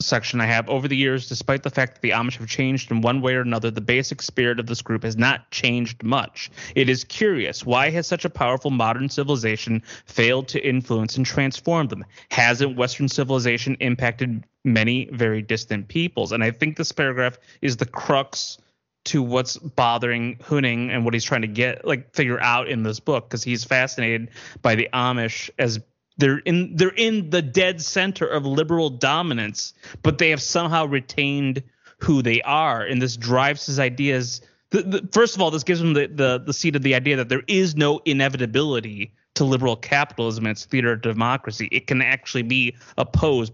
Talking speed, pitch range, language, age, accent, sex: 195 wpm, 120-150 Hz, English, 30-49, American, male